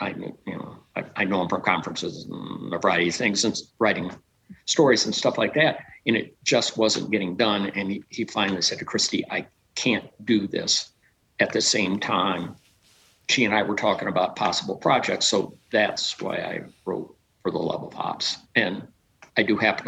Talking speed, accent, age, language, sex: 195 wpm, American, 50-69, English, male